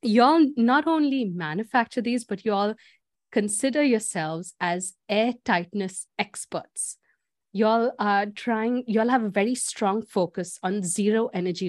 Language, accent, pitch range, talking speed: English, Indian, 195-240 Hz, 135 wpm